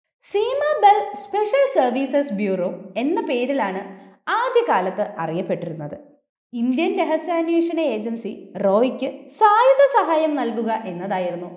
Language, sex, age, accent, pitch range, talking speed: Malayalam, female, 20-39, native, 205-345 Hz, 85 wpm